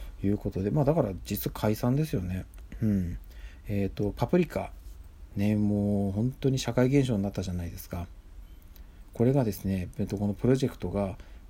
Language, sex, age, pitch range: Japanese, male, 40-59, 90-115 Hz